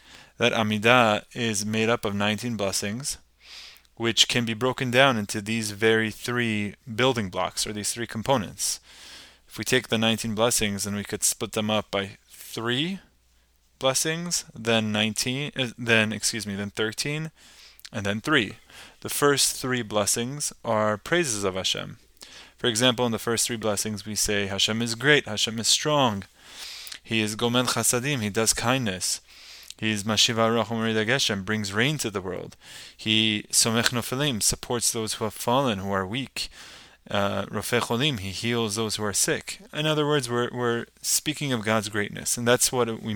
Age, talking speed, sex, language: 20-39, 165 wpm, male, English